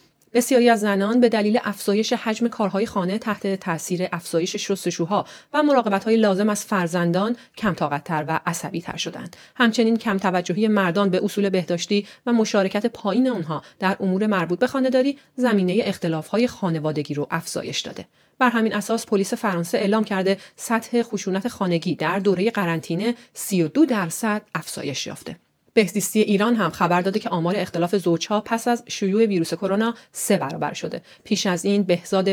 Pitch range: 175-225 Hz